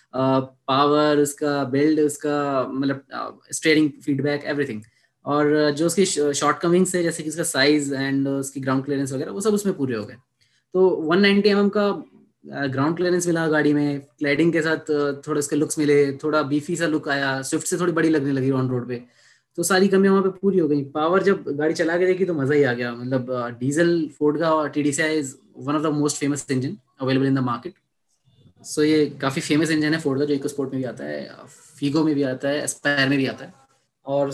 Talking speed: 205 wpm